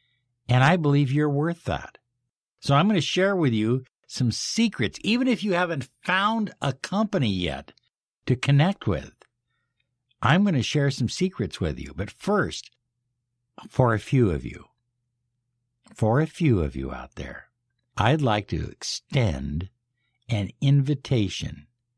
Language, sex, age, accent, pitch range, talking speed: English, male, 60-79, American, 110-140 Hz, 145 wpm